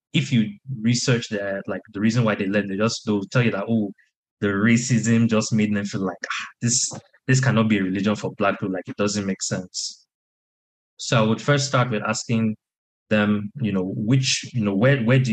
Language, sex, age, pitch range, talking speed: English, male, 20-39, 100-120 Hz, 215 wpm